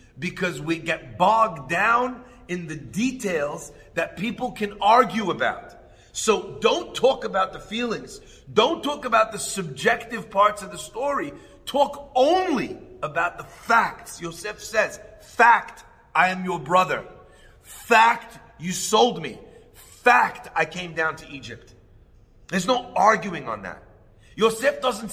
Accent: American